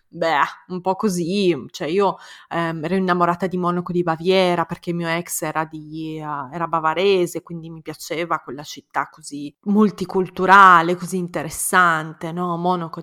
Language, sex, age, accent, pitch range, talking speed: Italian, female, 20-39, native, 165-190 Hz, 140 wpm